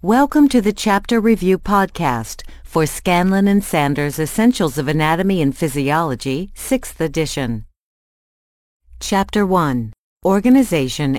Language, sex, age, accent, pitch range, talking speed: English, female, 50-69, American, 120-195 Hz, 105 wpm